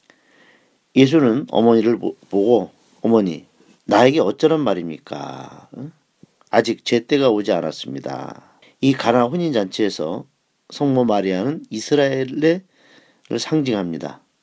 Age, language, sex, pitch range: 40-59, Korean, male, 100-155 Hz